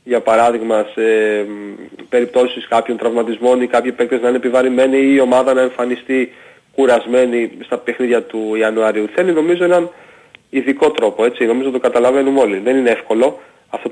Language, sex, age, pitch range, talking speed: Greek, male, 30-49, 120-150 Hz, 160 wpm